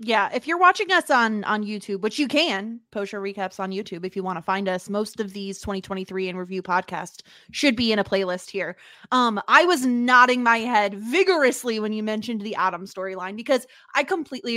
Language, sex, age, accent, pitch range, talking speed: English, female, 20-39, American, 200-275 Hz, 210 wpm